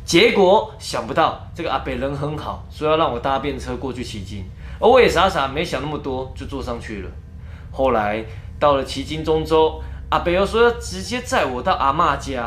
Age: 20-39